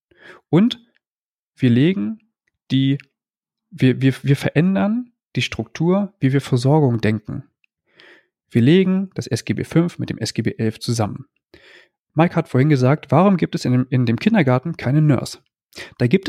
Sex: male